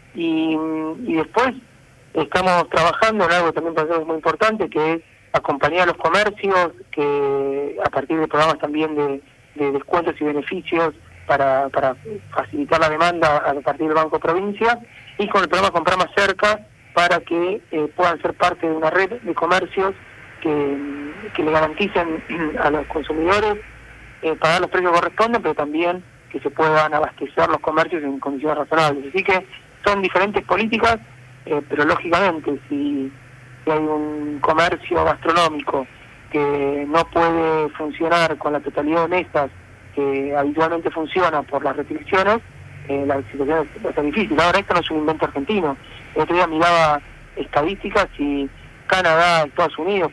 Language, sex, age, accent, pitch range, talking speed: Spanish, male, 40-59, Argentinian, 145-175 Hz, 160 wpm